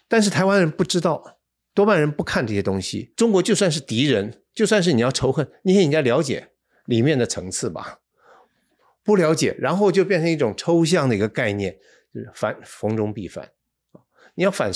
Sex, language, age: male, Chinese, 60-79